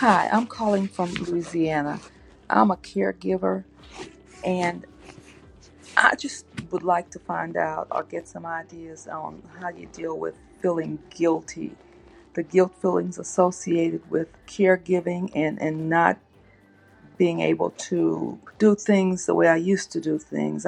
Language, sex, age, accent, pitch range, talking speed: English, female, 40-59, American, 140-185 Hz, 140 wpm